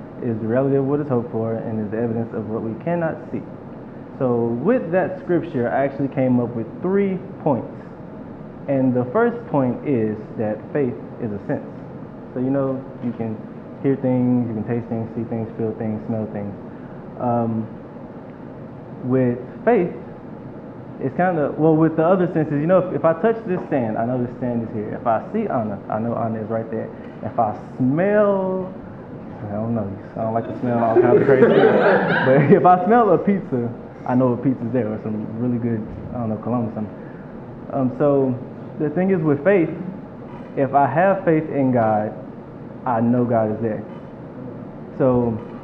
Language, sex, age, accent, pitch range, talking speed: English, male, 20-39, American, 115-145 Hz, 190 wpm